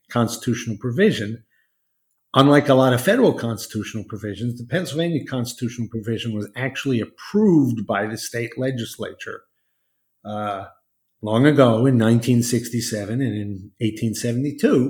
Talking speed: 115 wpm